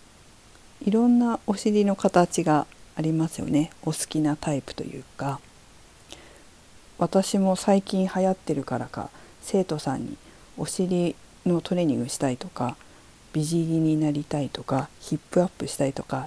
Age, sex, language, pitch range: 50-69, female, Japanese, 135-190 Hz